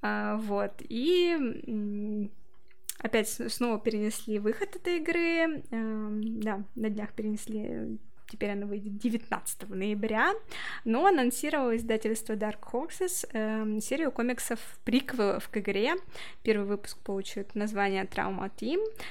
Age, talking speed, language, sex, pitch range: 20-39, 100 wpm, Russian, female, 205-245 Hz